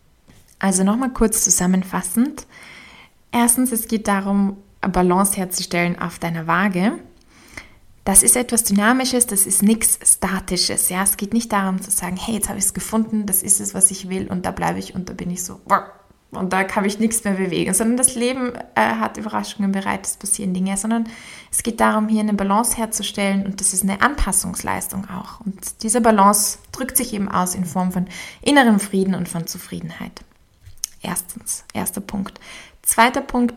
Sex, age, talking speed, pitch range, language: female, 20-39, 180 wpm, 190-225 Hz, German